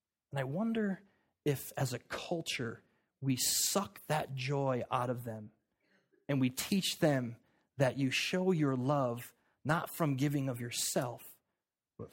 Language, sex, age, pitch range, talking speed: English, male, 30-49, 125-165 Hz, 145 wpm